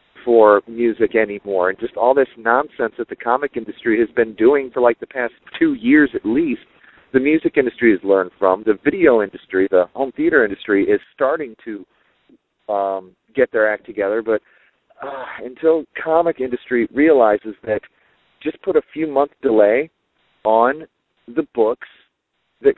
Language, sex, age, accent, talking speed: English, male, 40-59, American, 160 wpm